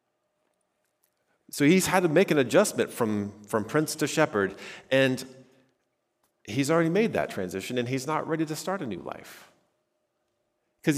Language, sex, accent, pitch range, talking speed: English, male, American, 115-150 Hz, 155 wpm